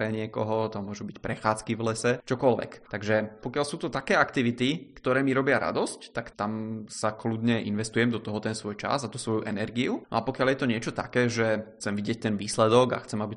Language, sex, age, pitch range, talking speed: Czech, male, 20-39, 110-115 Hz, 205 wpm